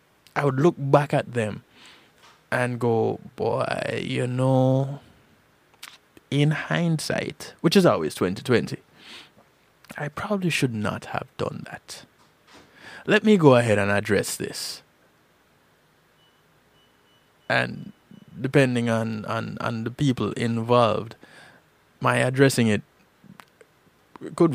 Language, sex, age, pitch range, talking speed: English, male, 20-39, 105-140 Hz, 105 wpm